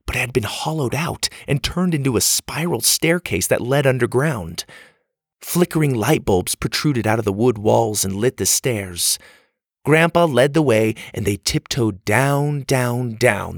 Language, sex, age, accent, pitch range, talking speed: English, male, 30-49, American, 100-140 Hz, 170 wpm